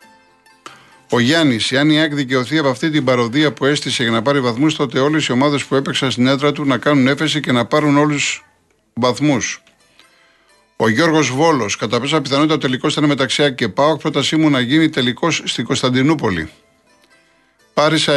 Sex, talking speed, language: male, 170 wpm, Greek